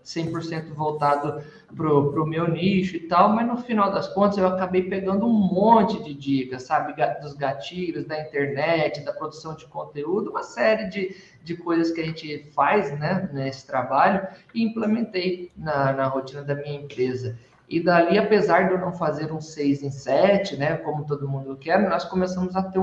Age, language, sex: 20-39, Portuguese, male